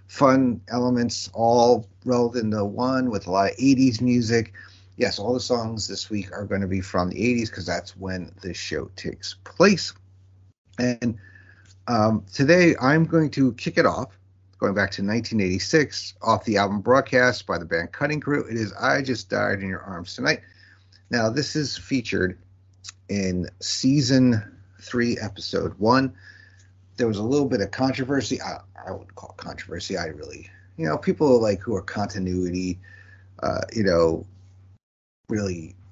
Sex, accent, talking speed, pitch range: male, American, 165 wpm, 95-120 Hz